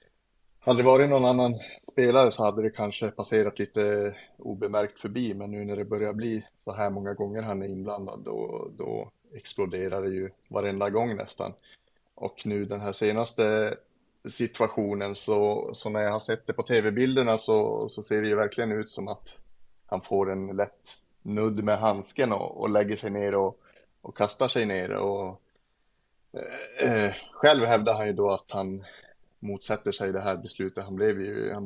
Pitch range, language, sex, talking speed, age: 100-110 Hz, Swedish, male, 180 wpm, 30-49